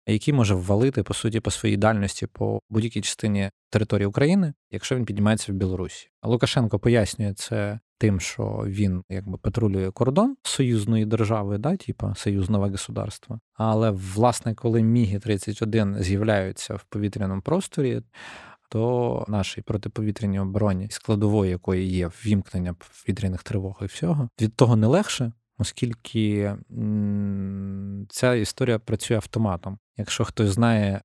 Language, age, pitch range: Ukrainian, 20-39, 95-115 Hz